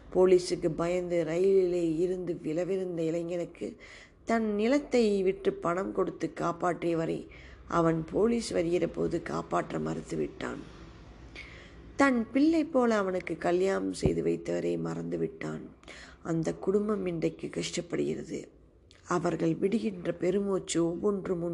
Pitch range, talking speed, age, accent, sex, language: 160-190 Hz, 100 wpm, 20-39, native, female, Tamil